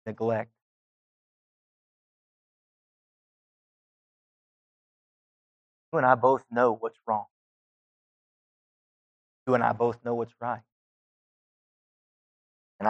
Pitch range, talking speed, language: 110-125 Hz, 75 wpm, English